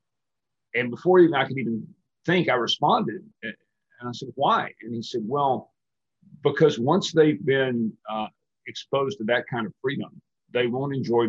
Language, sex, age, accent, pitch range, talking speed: English, male, 50-69, American, 110-140 Hz, 165 wpm